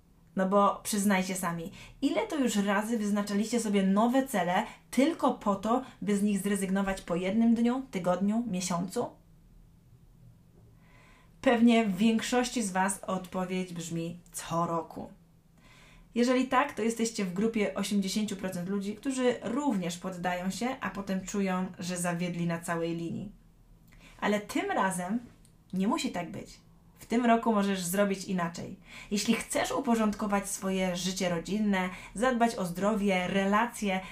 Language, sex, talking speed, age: Polish, female, 135 wpm, 20-39